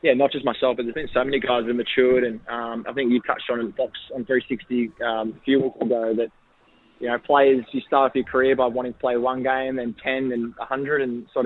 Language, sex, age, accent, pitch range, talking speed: English, male, 20-39, Australian, 120-130 Hz, 255 wpm